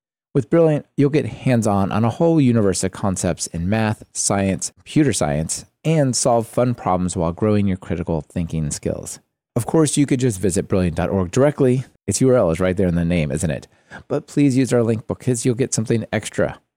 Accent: American